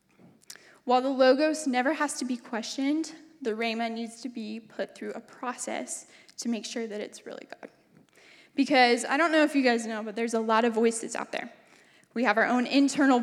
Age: 10-29